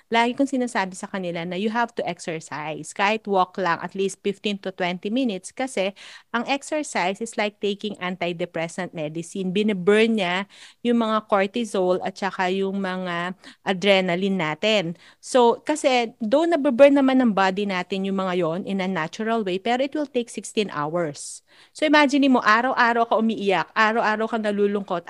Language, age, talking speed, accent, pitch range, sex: Filipino, 40-59, 165 wpm, native, 185-250 Hz, female